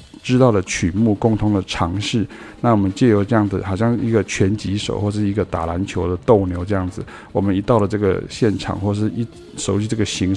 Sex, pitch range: male, 95-115 Hz